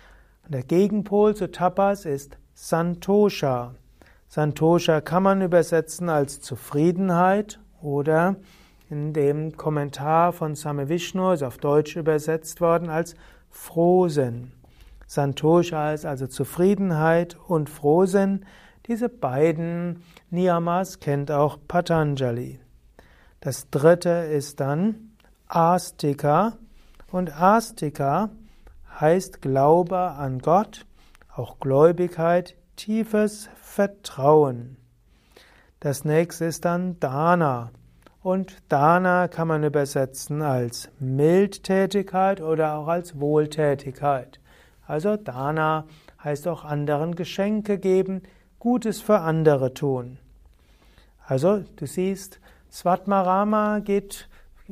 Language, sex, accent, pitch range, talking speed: German, male, German, 145-185 Hz, 95 wpm